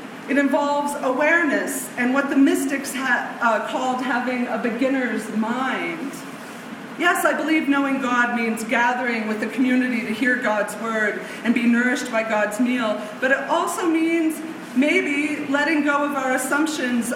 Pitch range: 245-290 Hz